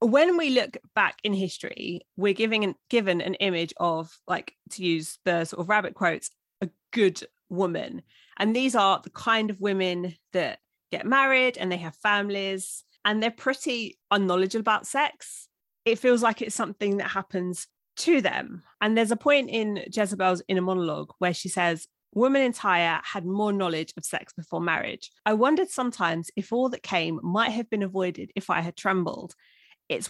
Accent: British